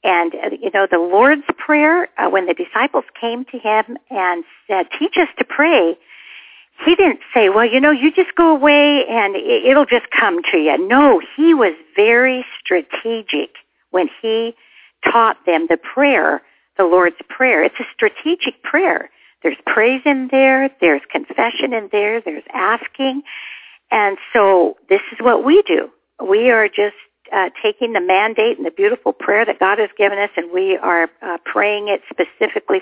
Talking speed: 170 wpm